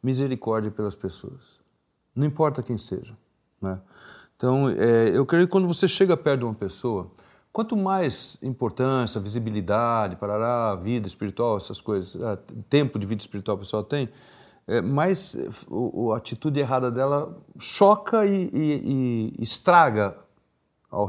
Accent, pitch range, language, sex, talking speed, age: Brazilian, 105-140 Hz, Portuguese, male, 140 wpm, 40-59